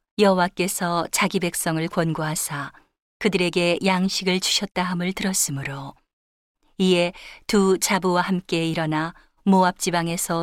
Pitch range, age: 165-195 Hz, 40-59